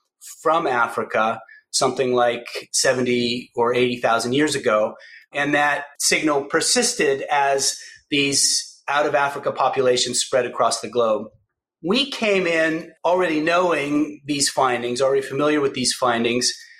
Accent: American